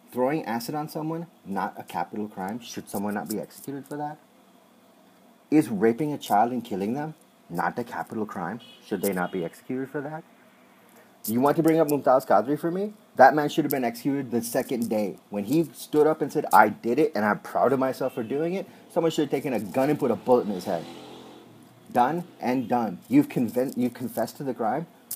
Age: 30-49